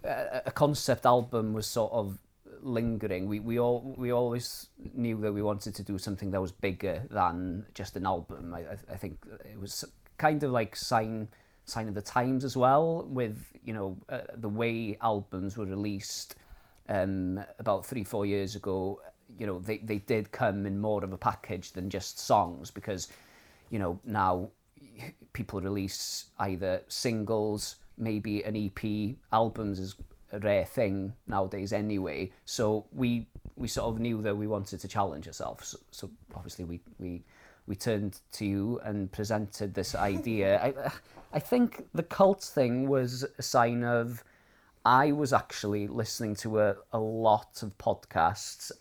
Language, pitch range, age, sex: English, 95-115 Hz, 20-39, male